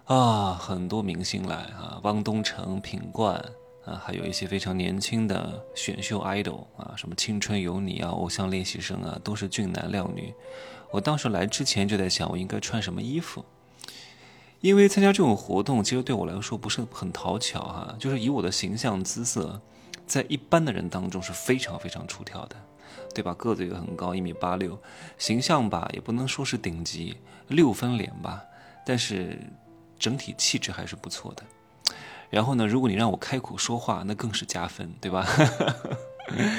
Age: 20-39